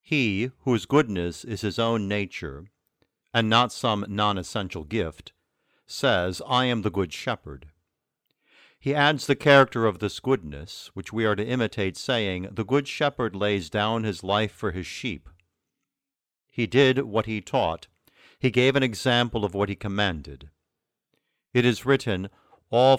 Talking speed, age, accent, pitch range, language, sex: 150 wpm, 50-69, American, 95-125 Hz, English, male